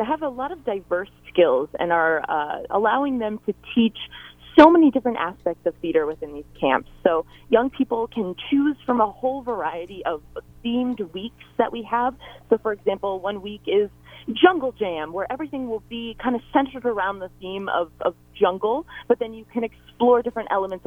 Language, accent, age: English, American, 30-49